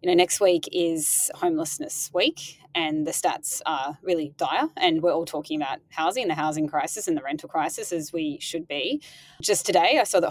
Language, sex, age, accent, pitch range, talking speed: English, female, 20-39, Australian, 160-195 Hz, 210 wpm